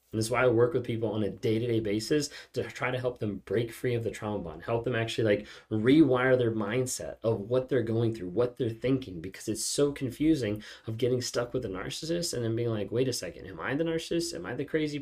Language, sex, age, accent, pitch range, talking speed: English, male, 20-39, American, 110-135 Hz, 250 wpm